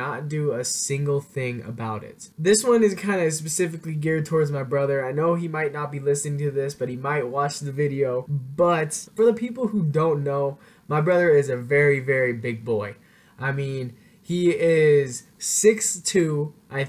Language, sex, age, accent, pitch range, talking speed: English, male, 10-29, American, 140-175 Hz, 185 wpm